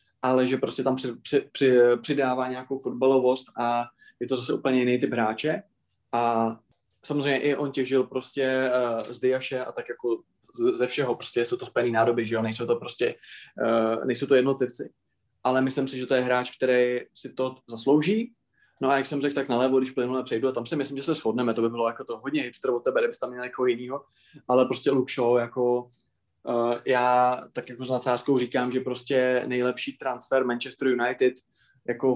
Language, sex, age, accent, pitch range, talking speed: Czech, male, 20-39, native, 120-135 Hz, 200 wpm